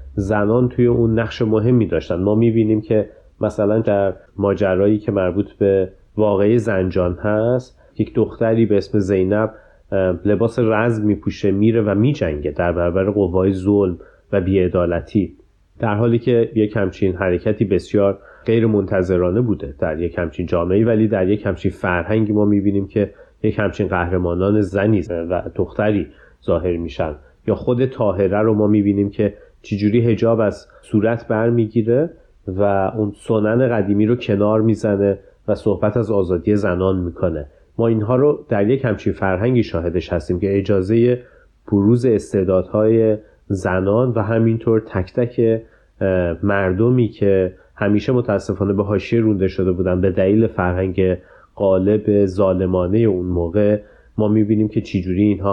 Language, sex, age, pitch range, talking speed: Persian, male, 30-49, 95-110 Hz, 140 wpm